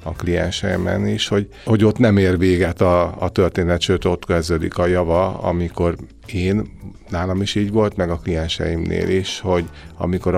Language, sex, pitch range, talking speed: Hungarian, male, 80-95 Hz, 170 wpm